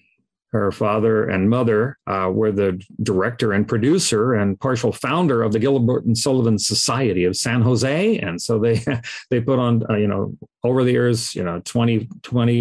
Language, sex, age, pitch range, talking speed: English, male, 50-69, 110-130 Hz, 180 wpm